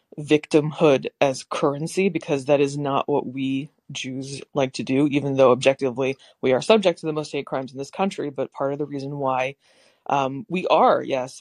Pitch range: 130-150 Hz